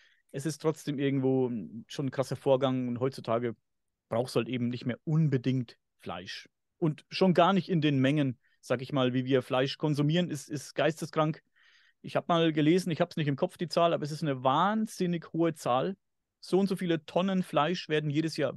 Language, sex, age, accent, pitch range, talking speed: German, male, 30-49, German, 140-185 Hz, 205 wpm